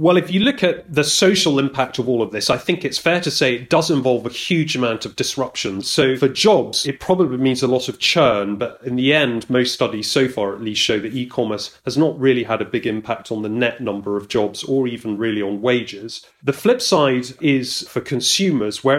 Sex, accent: male, British